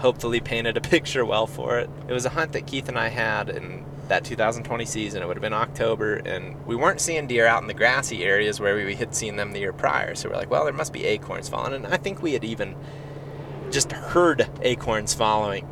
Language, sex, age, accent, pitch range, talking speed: English, male, 30-49, American, 115-145 Hz, 235 wpm